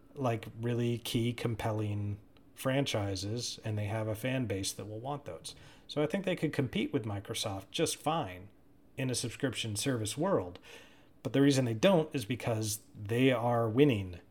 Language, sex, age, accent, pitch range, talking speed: English, male, 30-49, American, 110-130 Hz, 170 wpm